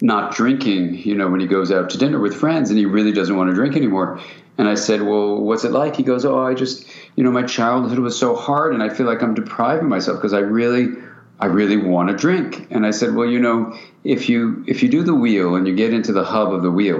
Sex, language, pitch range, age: male, English, 95-125 Hz, 50-69